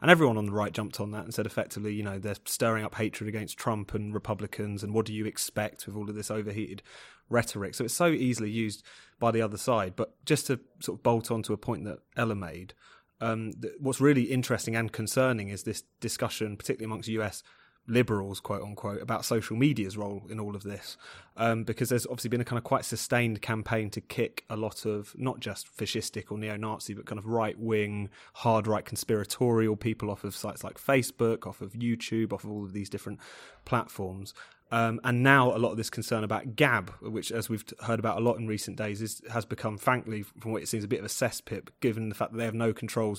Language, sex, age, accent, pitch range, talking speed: English, male, 30-49, British, 105-120 Hz, 225 wpm